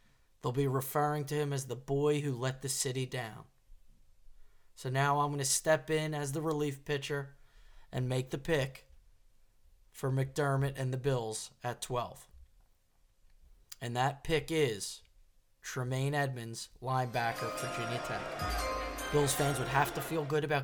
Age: 20-39